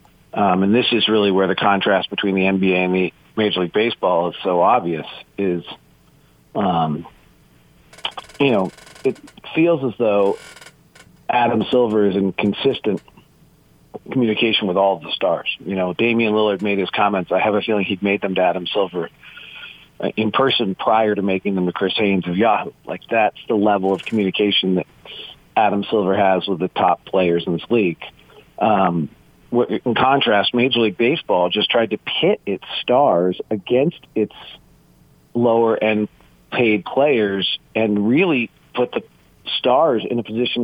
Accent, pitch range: American, 95-115 Hz